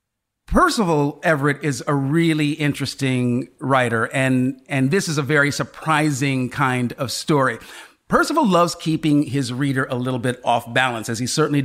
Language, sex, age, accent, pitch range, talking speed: English, male, 40-59, American, 130-170 Hz, 155 wpm